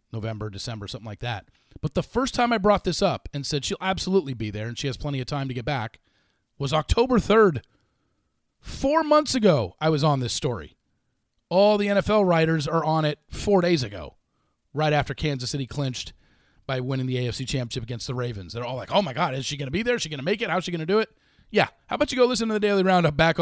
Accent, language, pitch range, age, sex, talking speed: American, English, 120-175 Hz, 30-49, male, 250 wpm